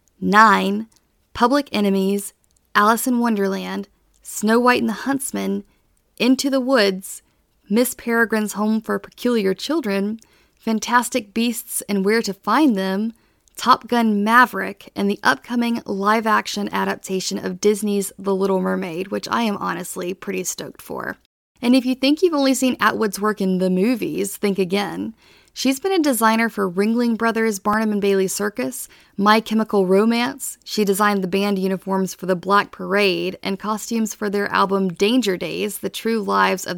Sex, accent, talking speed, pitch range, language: female, American, 155 wpm, 190-230 Hz, English